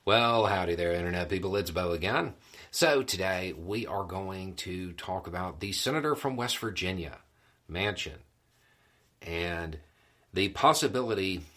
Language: English